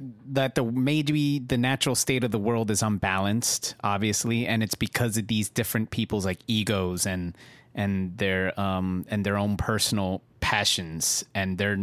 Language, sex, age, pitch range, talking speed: English, male, 30-49, 100-120 Hz, 160 wpm